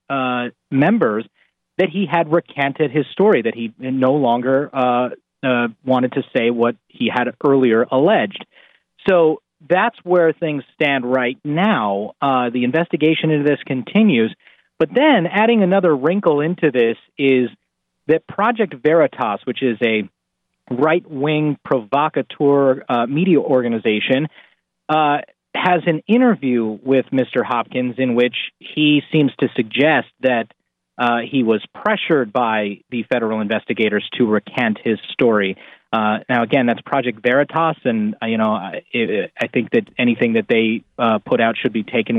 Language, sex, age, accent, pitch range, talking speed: English, male, 30-49, American, 120-160 Hz, 150 wpm